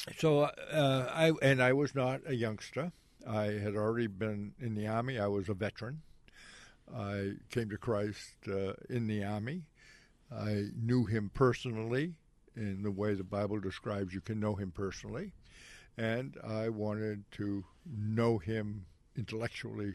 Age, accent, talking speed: 60-79, American, 150 wpm